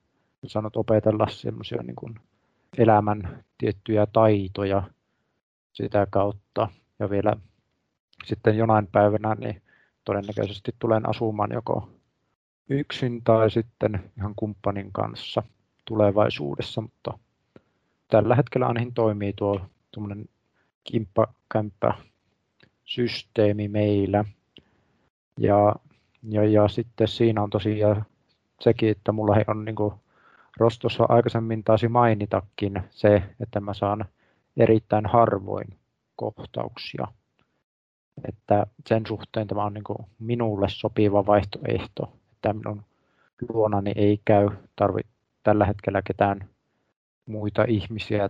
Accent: native